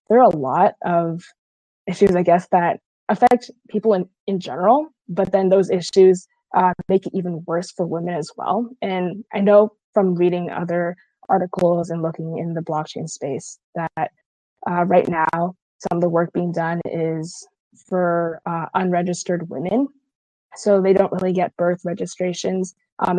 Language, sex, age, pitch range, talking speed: English, female, 20-39, 170-200 Hz, 165 wpm